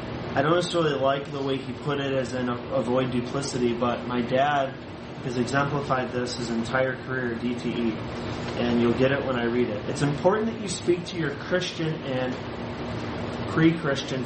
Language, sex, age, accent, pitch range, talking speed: English, male, 30-49, American, 125-170 Hz, 175 wpm